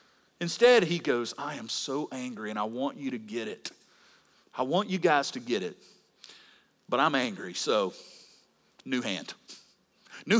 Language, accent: English, American